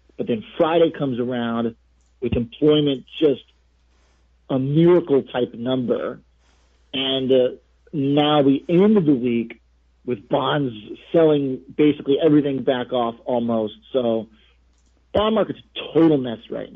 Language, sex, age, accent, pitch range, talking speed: English, male, 40-59, American, 110-140 Hz, 120 wpm